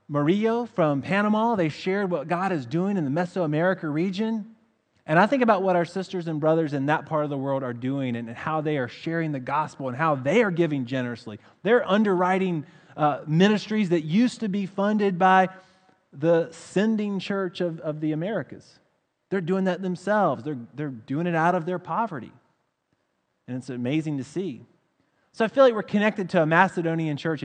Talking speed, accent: 190 wpm, American